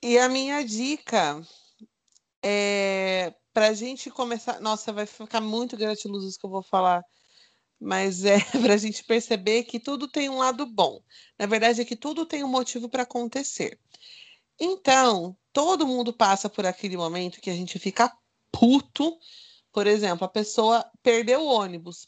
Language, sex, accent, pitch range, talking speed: Portuguese, female, Brazilian, 205-250 Hz, 165 wpm